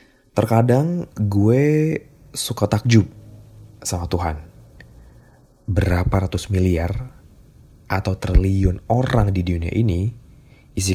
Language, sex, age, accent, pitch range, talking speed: Indonesian, male, 20-39, native, 85-110 Hz, 90 wpm